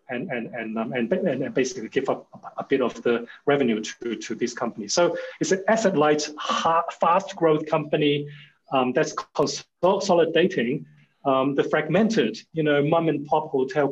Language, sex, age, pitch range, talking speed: English, male, 30-49, 130-155 Hz, 175 wpm